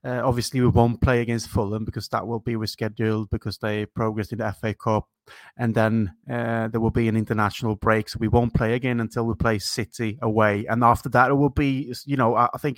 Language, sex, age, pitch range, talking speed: English, male, 30-49, 110-125 Hz, 225 wpm